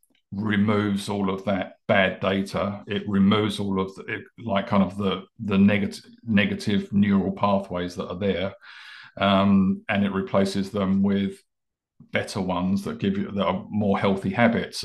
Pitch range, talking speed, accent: 95-105 Hz, 160 wpm, British